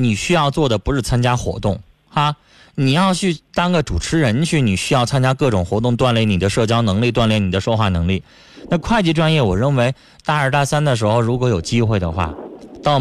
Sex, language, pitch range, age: male, Chinese, 115-165 Hz, 20-39